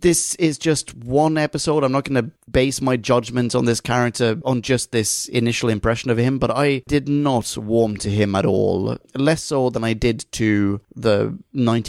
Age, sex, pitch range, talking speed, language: 30-49, male, 115-145 Hz, 190 wpm, English